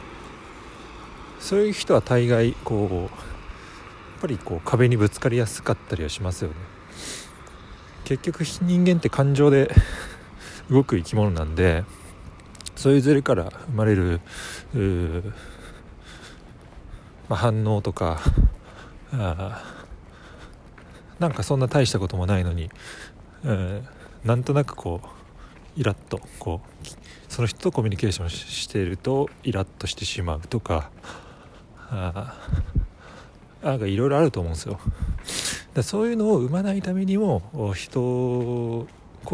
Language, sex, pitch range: Japanese, male, 85-120 Hz